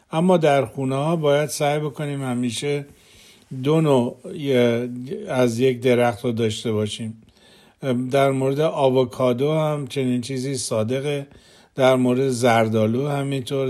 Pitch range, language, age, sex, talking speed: 120-145 Hz, Persian, 50-69, male, 120 wpm